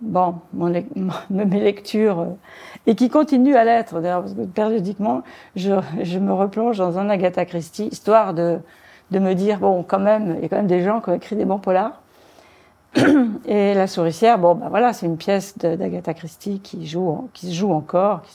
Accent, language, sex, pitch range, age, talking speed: French, French, female, 175-215 Hz, 50-69, 195 wpm